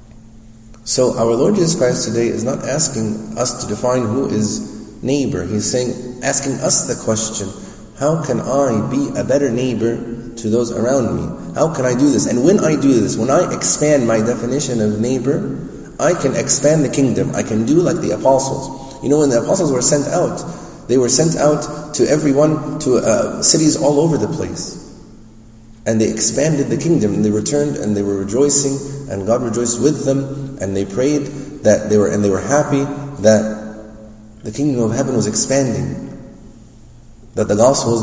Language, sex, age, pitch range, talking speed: English, male, 30-49, 110-140 Hz, 190 wpm